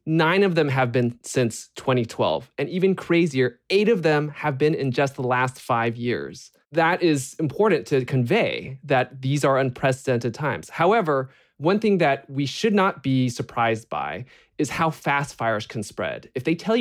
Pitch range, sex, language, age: 120-150 Hz, male, English, 20-39